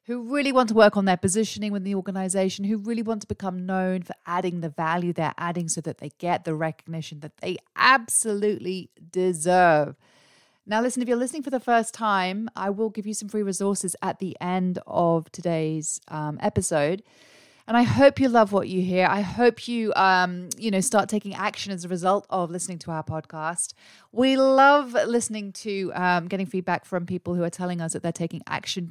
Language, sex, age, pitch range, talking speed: English, female, 30-49, 165-205 Hz, 205 wpm